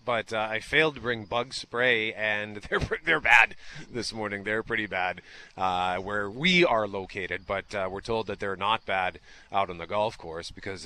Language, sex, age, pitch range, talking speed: English, male, 30-49, 110-150 Hz, 200 wpm